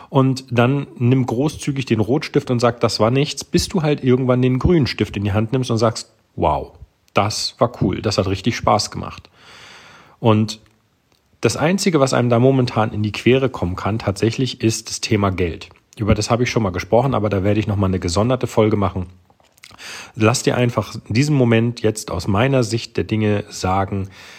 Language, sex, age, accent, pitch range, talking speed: German, male, 40-59, German, 100-120 Hz, 195 wpm